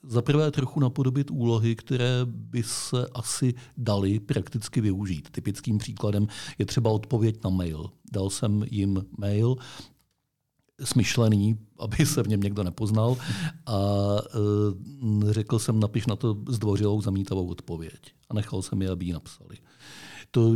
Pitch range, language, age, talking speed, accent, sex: 100-125 Hz, Czech, 50-69, 135 wpm, native, male